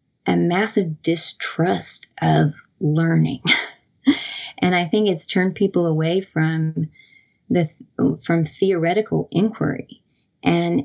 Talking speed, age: 105 wpm, 20-39